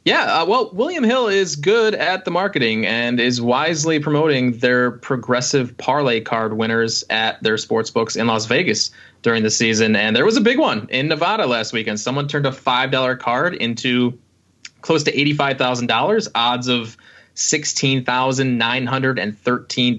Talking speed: 150 wpm